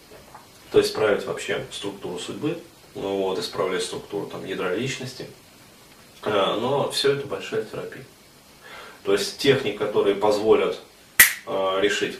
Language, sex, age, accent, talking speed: Russian, male, 30-49, native, 110 wpm